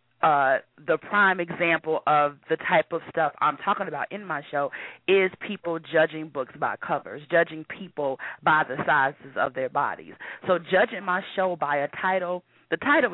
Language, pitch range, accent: English, 155-195 Hz, American